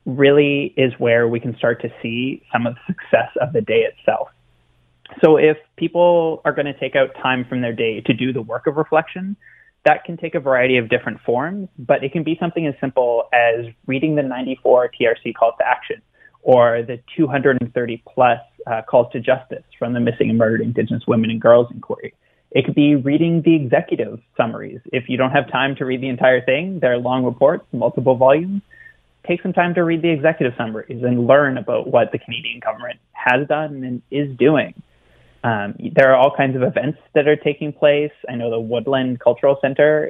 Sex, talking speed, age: male, 200 wpm, 20-39